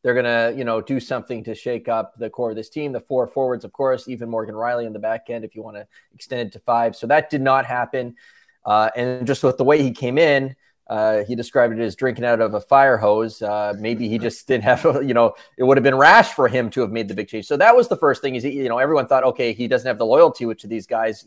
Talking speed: 285 wpm